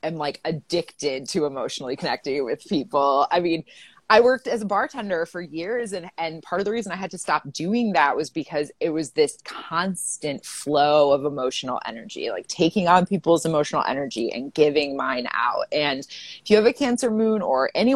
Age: 20-39